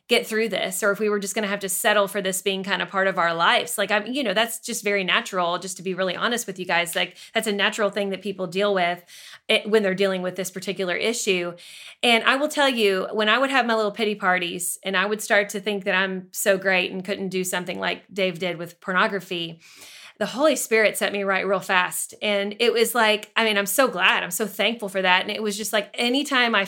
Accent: American